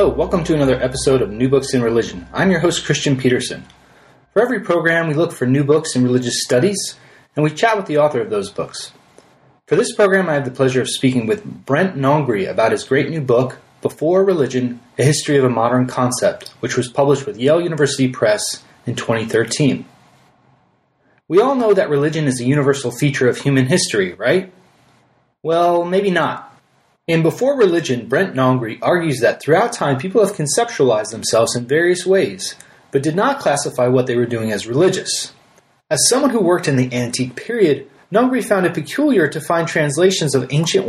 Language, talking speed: English, 190 wpm